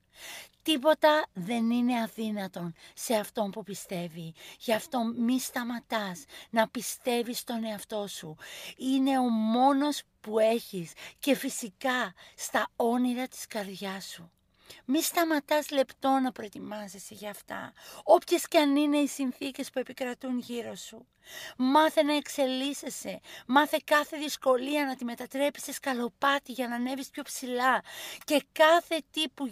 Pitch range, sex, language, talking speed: 220-270 Hz, female, Greek, 135 wpm